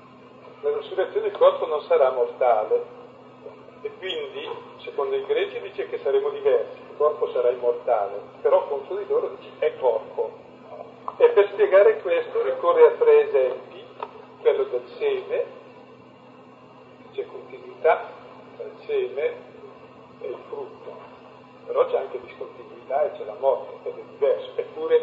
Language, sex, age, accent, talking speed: Italian, male, 40-59, native, 135 wpm